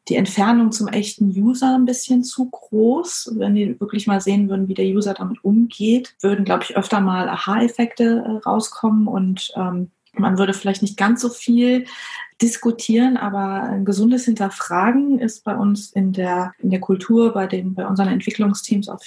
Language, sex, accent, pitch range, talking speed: German, female, German, 190-225 Hz, 175 wpm